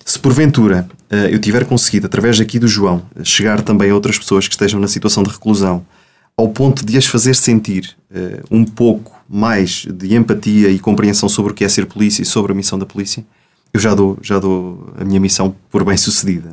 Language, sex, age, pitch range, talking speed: Portuguese, male, 20-39, 95-110 Hz, 205 wpm